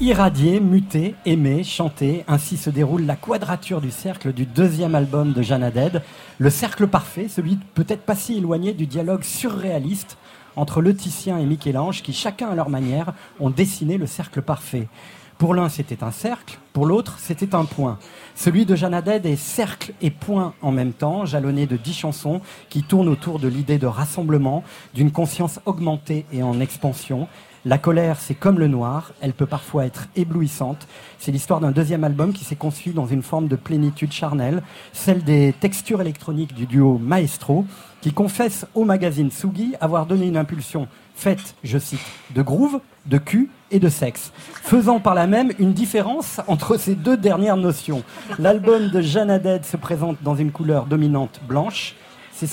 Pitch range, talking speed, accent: 145-190 Hz, 175 wpm, French